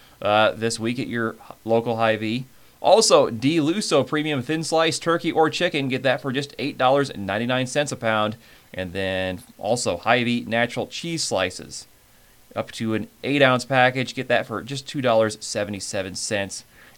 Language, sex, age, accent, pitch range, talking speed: English, male, 30-49, American, 100-130 Hz, 140 wpm